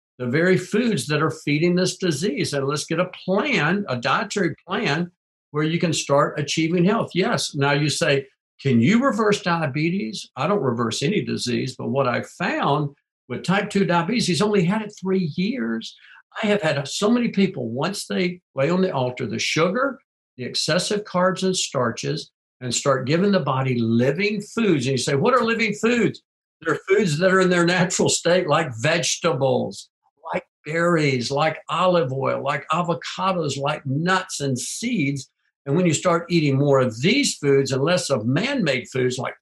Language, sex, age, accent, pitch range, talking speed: English, male, 60-79, American, 140-185 Hz, 180 wpm